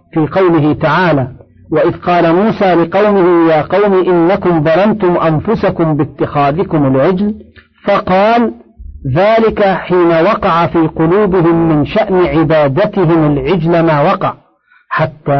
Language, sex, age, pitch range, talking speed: Arabic, male, 50-69, 155-190 Hz, 105 wpm